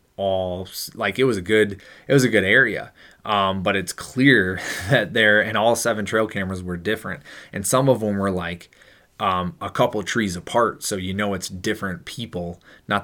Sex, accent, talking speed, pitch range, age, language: male, American, 200 wpm, 95-105 Hz, 20-39, English